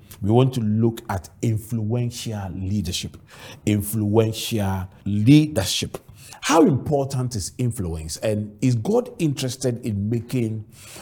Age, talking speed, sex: 50-69, 105 wpm, male